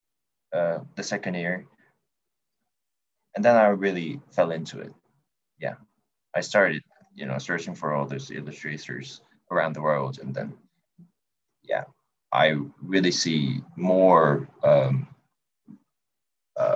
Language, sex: English, male